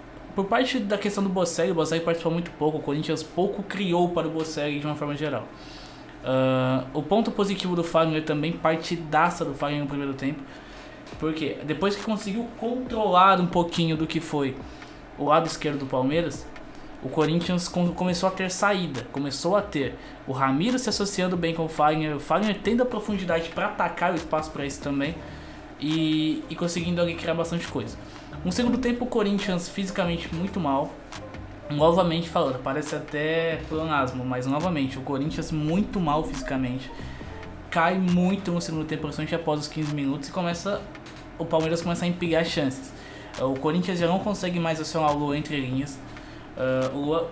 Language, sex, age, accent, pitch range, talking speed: Portuguese, male, 20-39, Brazilian, 145-175 Hz, 180 wpm